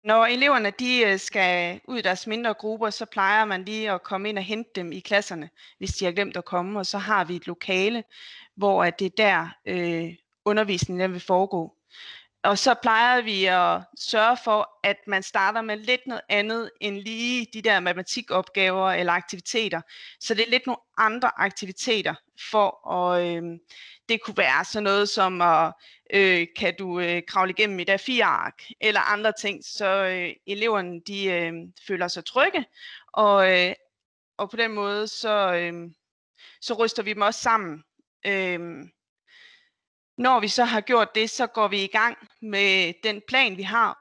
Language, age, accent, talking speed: Danish, 30-49, native, 180 wpm